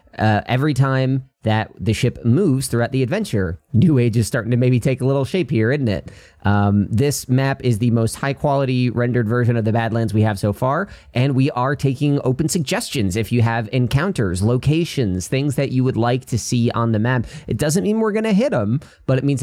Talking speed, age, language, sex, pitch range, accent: 215 wpm, 30-49, English, male, 105-150 Hz, American